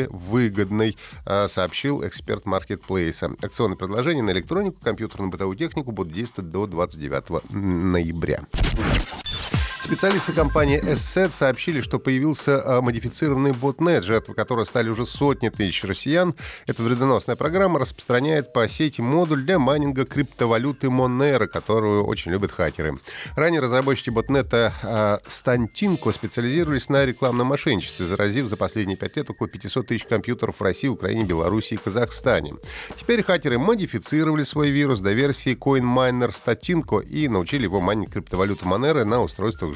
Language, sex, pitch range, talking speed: Russian, male, 100-140 Hz, 130 wpm